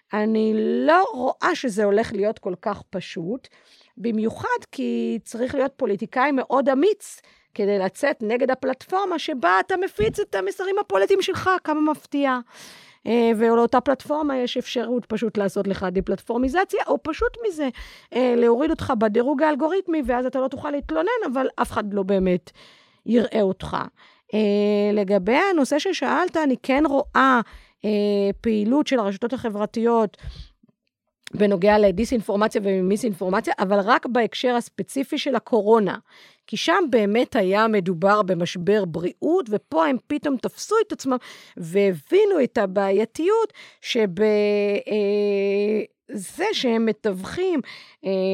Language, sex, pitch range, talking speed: Hebrew, female, 205-290 Hz, 120 wpm